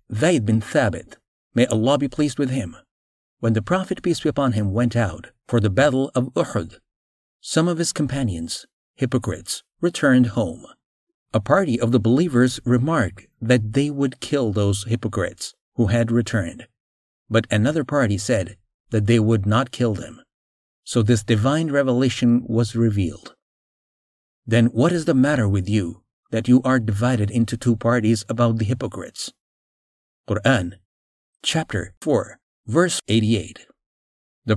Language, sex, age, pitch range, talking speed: English, male, 50-69, 110-135 Hz, 145 wpm